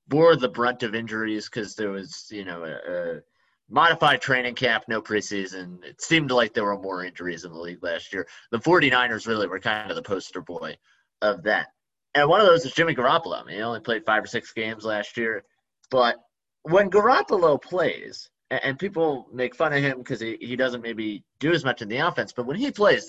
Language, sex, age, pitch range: English, male, 30-49, 110-150 Hz